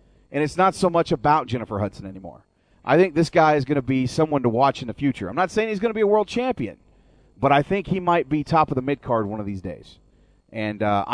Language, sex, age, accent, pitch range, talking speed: English, male, 40-59, American, 115-160 Hz, 265 wpm